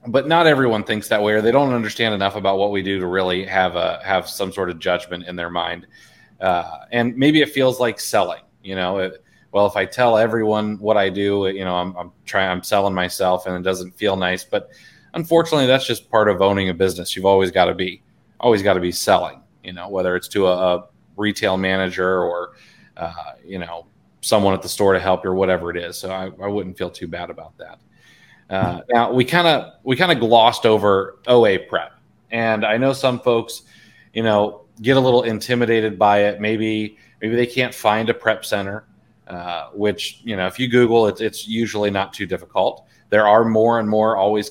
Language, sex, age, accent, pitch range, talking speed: English, male, 30-49, American, 95-115 Hz, 220 wpm